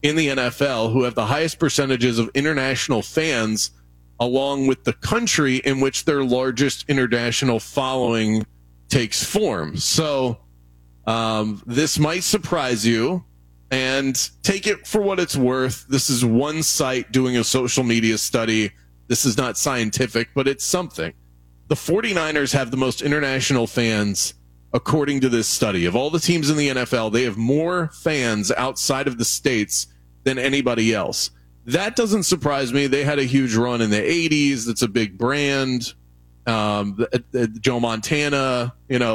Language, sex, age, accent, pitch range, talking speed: English, male, 30-49, American, 110-140 Hz, 160 wpm